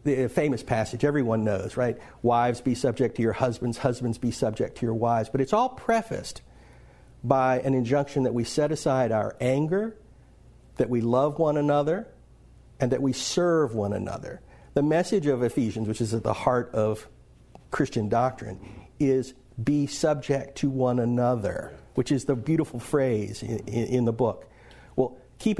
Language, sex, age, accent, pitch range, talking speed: English, male, 50-69, American, 115-145 Hz, 165 wpm